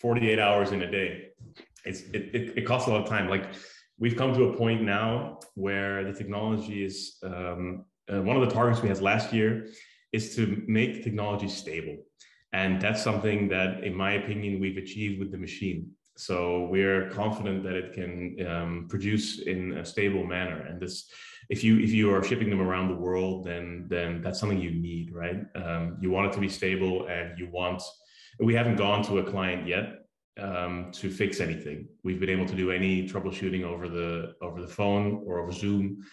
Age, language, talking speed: 30-49, English, 195 wpm